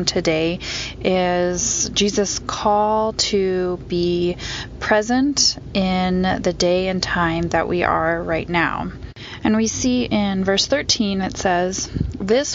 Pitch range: 175-215 Hz